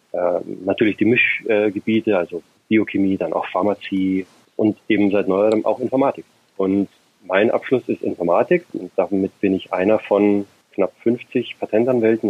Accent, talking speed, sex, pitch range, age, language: German, 135 wpm, male, 95-115 Hz, 30-49, English